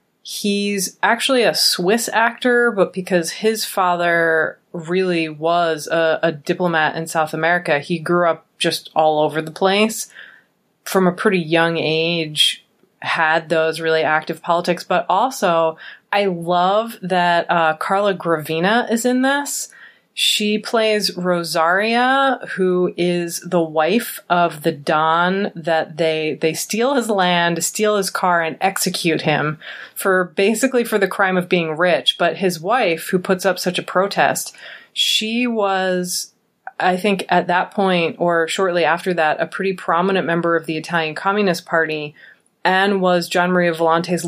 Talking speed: 150 wpm